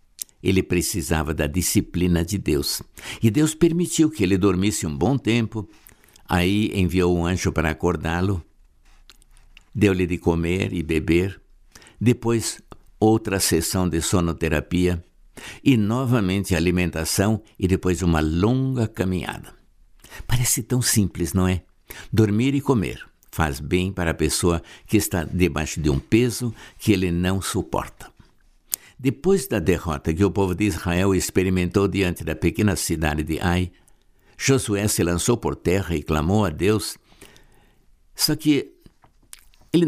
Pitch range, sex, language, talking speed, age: 85-105 Hz, male, Portuguese, 135 wpm, 60-79